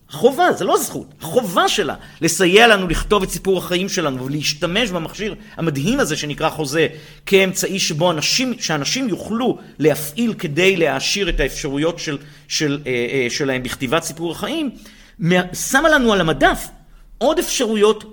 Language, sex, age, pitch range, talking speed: Hebrew, male, 50-69, 155-225 Hz, 135 wpm